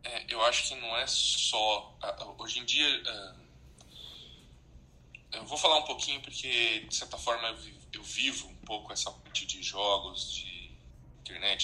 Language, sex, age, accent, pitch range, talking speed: Portuguese, male, 10-29, Brazilian, 65-105 Hz, 160 wpm